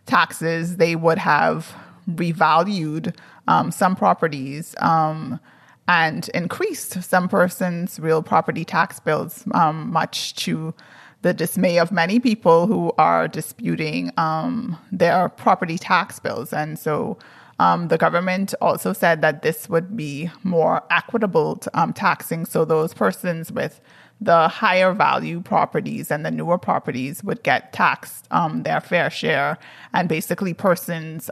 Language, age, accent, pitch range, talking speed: English, 30-49, American, 160-185 Hz, 135 wpm